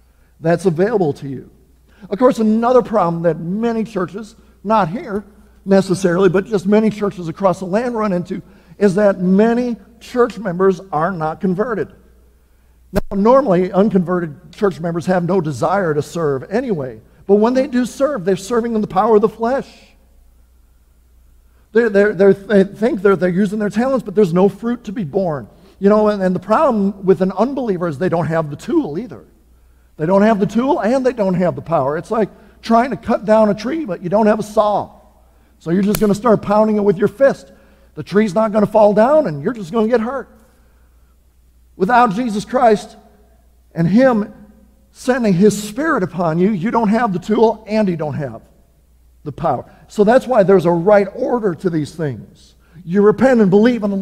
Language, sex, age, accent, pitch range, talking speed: English, male, 50-69, American, 170-220 Hz, 190 wpm